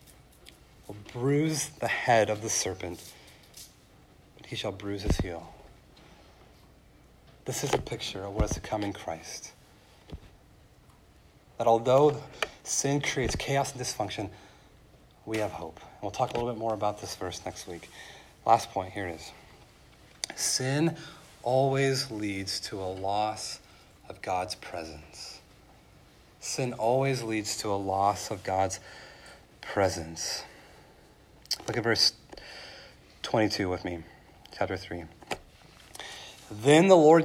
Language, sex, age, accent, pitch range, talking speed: English, male, 40-59, American, 95-130 Hz, 125 wpm